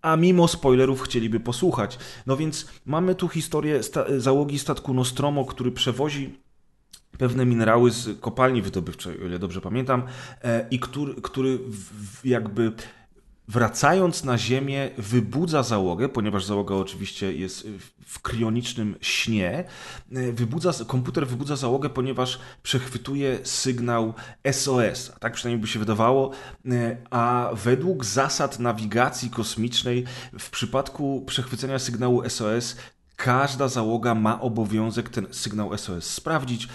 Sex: male